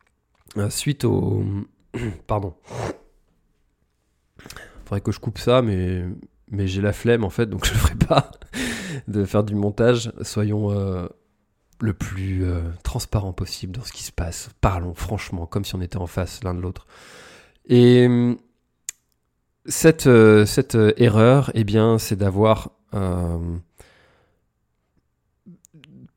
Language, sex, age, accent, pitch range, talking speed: French, male, 20-39, French, 95-115 Hz, 135 wpm